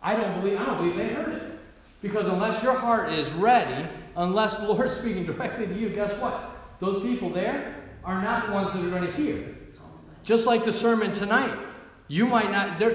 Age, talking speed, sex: 40-59, 215 wpm, male